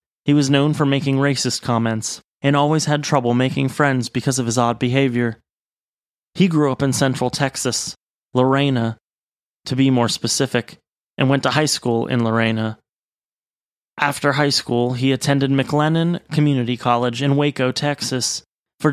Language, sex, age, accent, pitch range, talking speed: English, male, 30-49, American, 120-140 Hz, 150 wpm